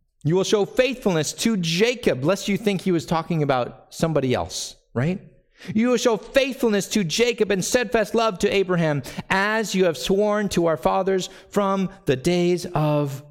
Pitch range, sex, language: 140-205 Hz, male, English